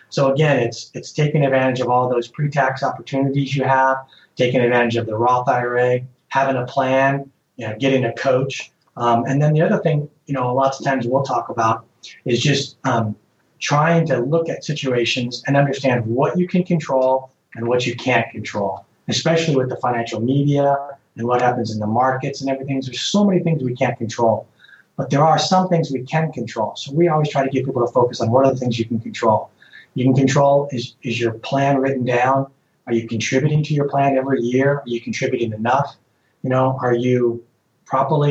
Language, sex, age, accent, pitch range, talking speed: English, male, 30-49, American, 120-140 Hz, 205 wpm